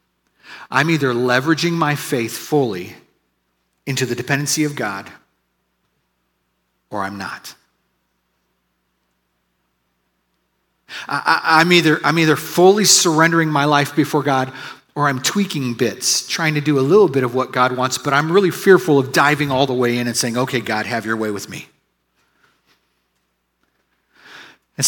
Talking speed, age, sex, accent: 135 wpm, 40-59, male, American